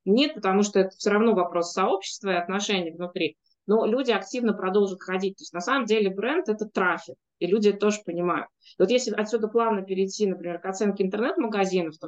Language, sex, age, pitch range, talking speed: Russian, female, 20-39, 180-220 Hz, 205 wpm